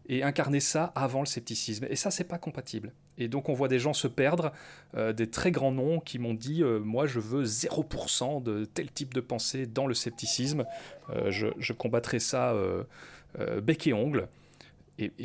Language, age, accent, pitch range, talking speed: French, 30-49, French, 110-145 Hz, 200 wpm